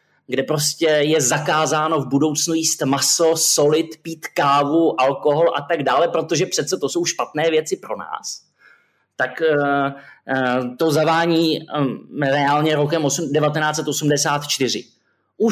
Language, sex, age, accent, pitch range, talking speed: Czech, male, 20-39, native, 125-160 Hz, 110 wpm